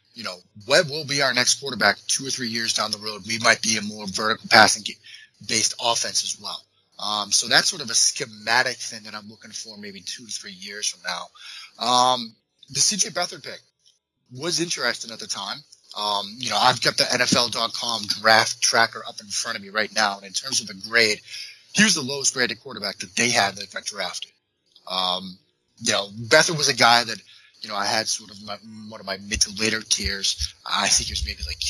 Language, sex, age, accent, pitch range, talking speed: English, male, 30-49, American, 105-135 Hz, 220 wpm